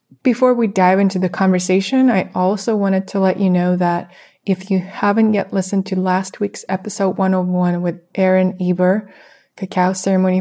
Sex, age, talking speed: female, 20-39, 165 wpm